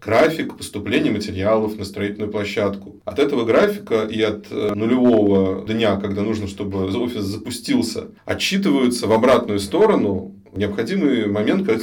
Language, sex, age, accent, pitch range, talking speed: Russian, male, 20-39, native, 100-115 Hz, 125 wpm